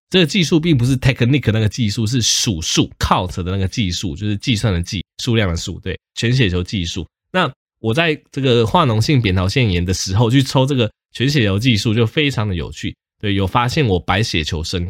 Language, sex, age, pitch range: Chinese, male, 20-39, 90-120 Hz